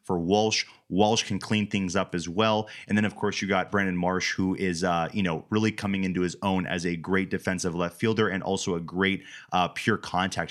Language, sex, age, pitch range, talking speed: English, male, 30-49, 90-105 Hz, 230 wpm